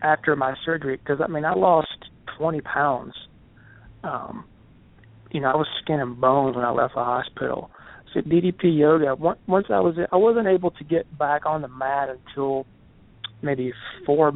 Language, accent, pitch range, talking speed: English, American, 130-155 Hz, 175 wpm